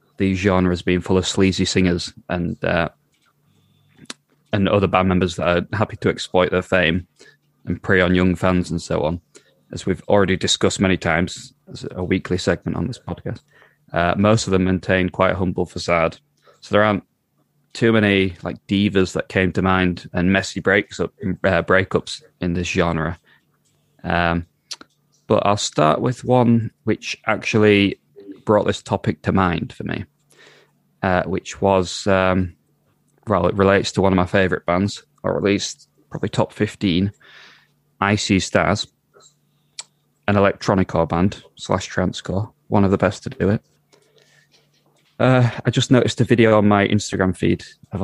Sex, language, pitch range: male, English, 90-105 Hz